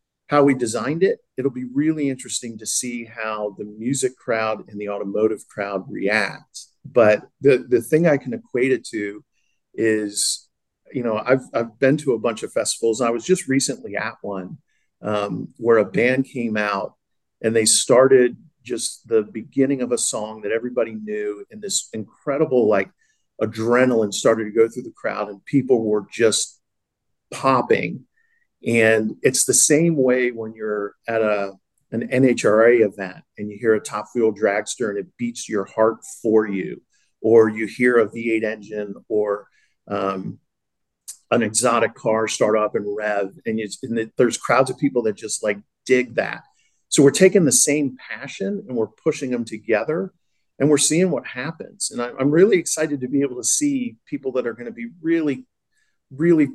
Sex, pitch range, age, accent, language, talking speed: male, 110-140 Hz, 50-69, American, English, 170 wpm